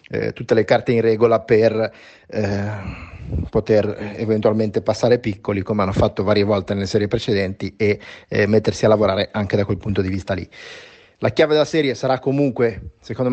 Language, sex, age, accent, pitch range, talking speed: Italian, male, 30-49, native, 105-125 Hz, 175 wpm